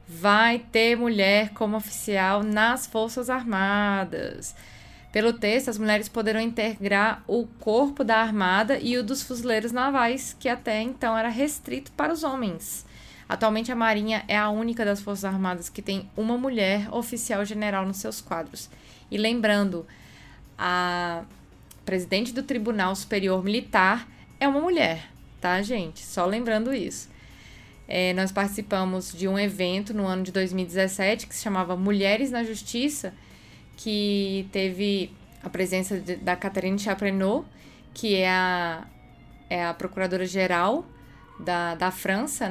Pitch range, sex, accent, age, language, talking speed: 185-225 Hz, female, Brazilian, 20-39, Portuguese, 140 wpm